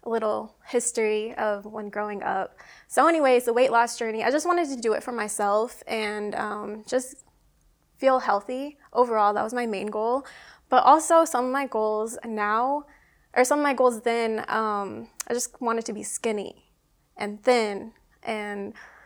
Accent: American